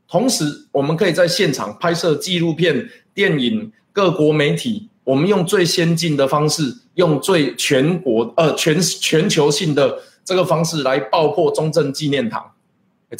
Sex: male